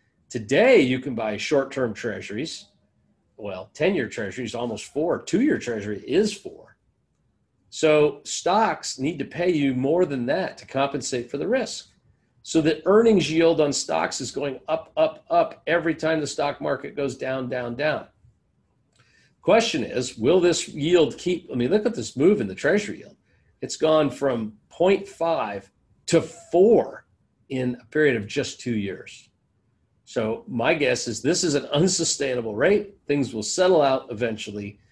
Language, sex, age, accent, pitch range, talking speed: English, male, 50-69, American, 120-165 Hz, 160 wpm